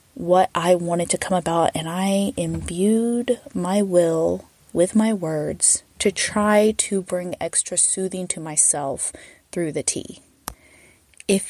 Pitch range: 175-230 Hz